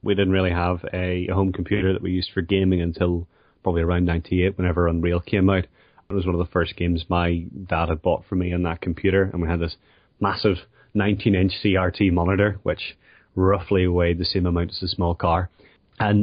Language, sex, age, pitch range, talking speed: English, male, 30-49, 90-100 Hz, 205 wpm